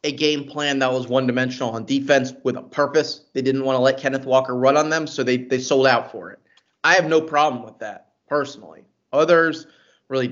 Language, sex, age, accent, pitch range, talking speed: English, male, 30-49, American, 125-150 Hz, 215 wpm